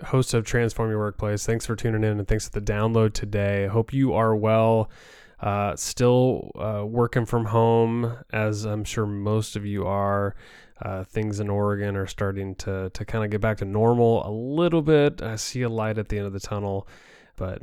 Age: 20-39